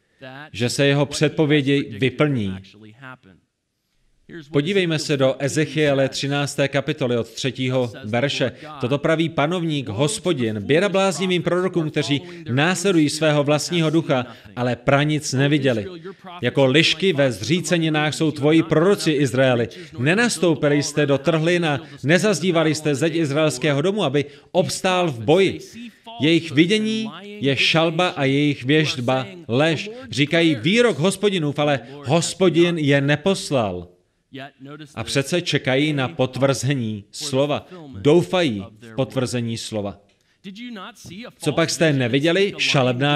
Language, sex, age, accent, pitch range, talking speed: Czech, male, 30-49, native, 135-170 Hz, 110 wpm